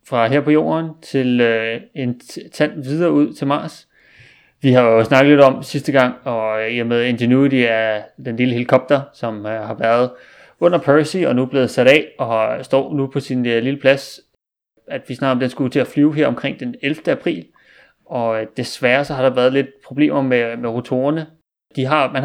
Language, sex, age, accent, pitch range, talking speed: Danish, male, 30-49, native, 120-140 Hz, 200 wpm